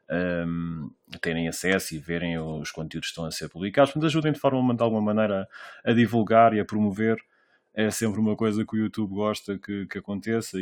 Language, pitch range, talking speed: Portuguese, 90-110 Hz, 190 wpm